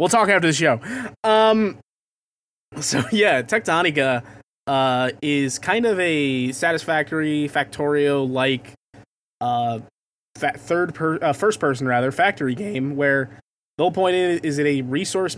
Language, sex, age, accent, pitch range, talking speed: English, male, 20-39, American, 130-155 Hz, 140 wpm